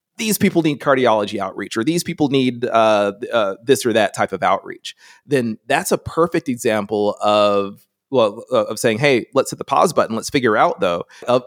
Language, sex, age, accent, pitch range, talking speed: English, male, 30-49, American, 110-135 Hz, 195 wpm